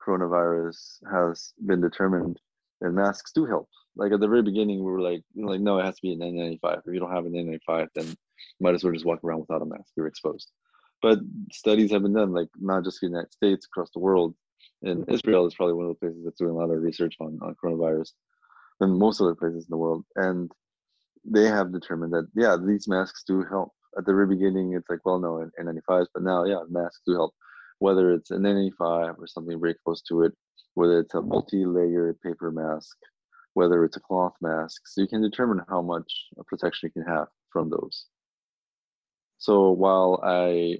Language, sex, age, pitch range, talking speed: English, male, 20-39, 85-95 Hz, 210 wpm